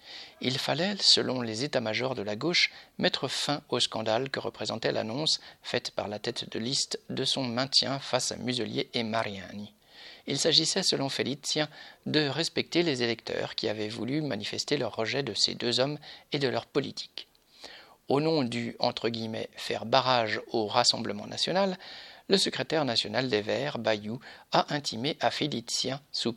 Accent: French